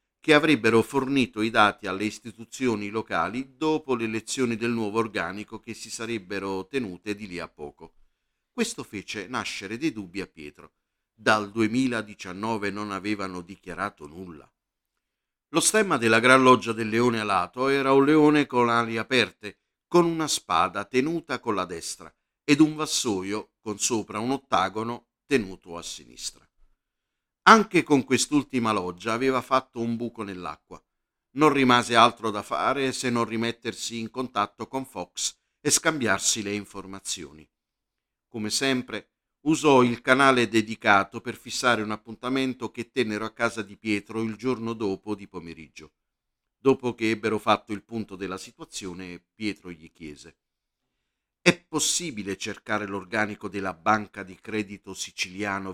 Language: Italian